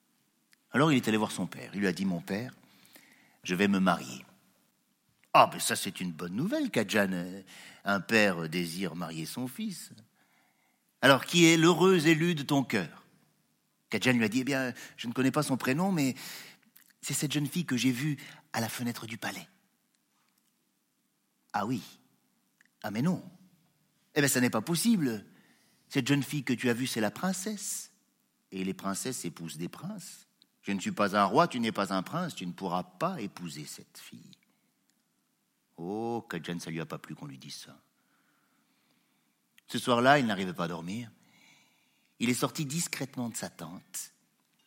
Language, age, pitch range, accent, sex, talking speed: French, 50-69, 90-150 Hz, French, male, 185 wpm